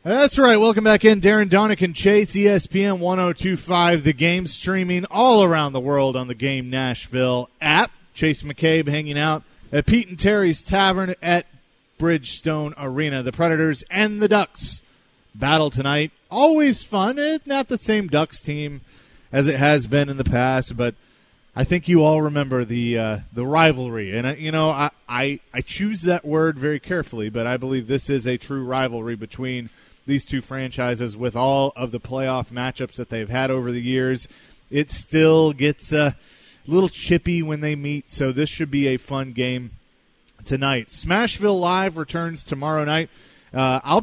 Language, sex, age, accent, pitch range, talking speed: English, male, 30-49, American, 130-170 Hz, 175 wpm